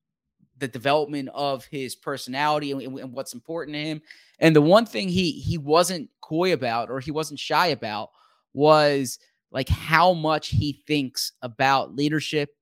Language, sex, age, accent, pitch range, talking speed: English, male, 30-49, American, 135-155 Hz, 155 wpm